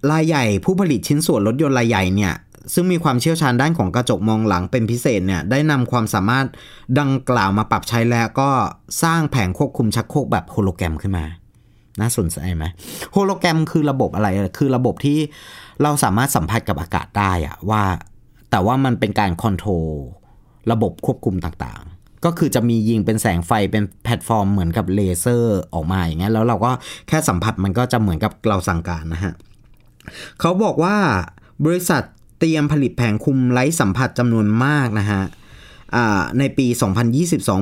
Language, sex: Thai, male